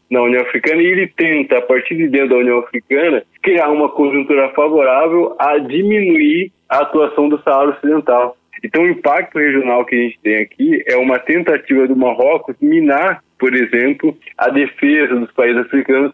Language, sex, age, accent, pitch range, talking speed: Portuguese, male, 20-39, Brazilian, 125-175 Hz, 170 wpm